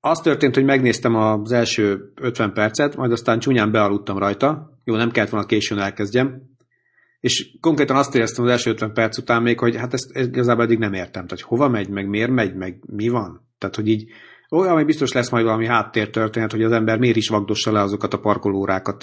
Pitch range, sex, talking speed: 105-125 Hz, male, 210 wpm